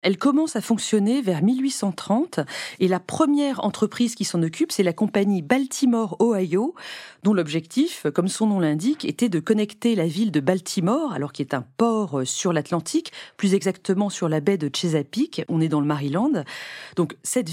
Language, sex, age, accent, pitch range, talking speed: French, female, 40-59, French, 170-240 Hz, 180 wpm